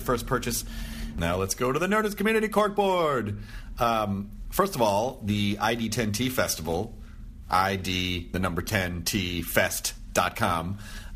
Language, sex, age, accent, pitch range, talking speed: English, male, 30-49, American, 100-135 Hz, 110 wpm